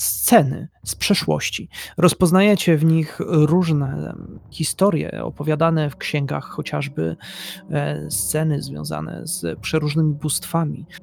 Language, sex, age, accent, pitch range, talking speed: Polish, male, 30-49, native, 135-165 Hz, 90 wpm